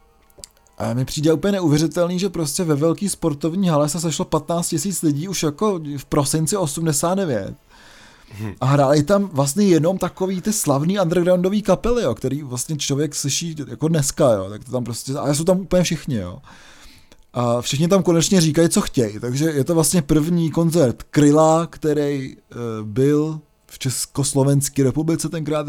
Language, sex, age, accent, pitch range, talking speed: Czech, male, 20-39, native, 140-170 Hz, 165 wpm